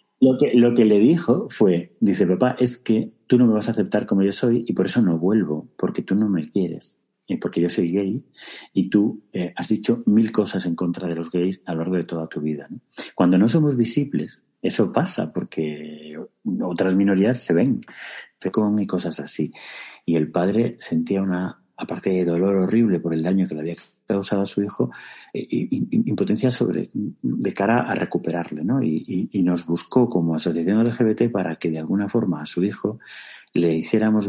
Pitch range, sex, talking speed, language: 85-110 Hz, male, 205 wpm, Spanish